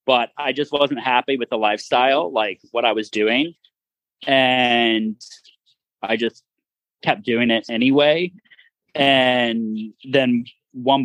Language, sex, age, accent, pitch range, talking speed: English, male, 30-49, American, 115-140 Hz, 125 wpm